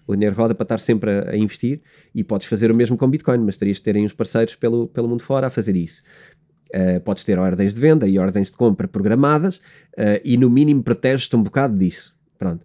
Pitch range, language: 105-145 Hz, Portuguese